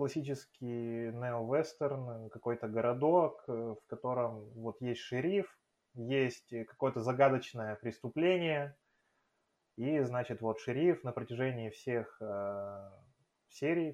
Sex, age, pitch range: male, 20-39, 115-140 Hz